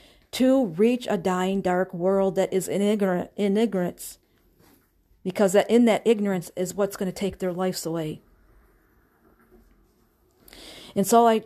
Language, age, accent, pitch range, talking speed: English, 40-59, American, 185-215 Hz, 150 wpm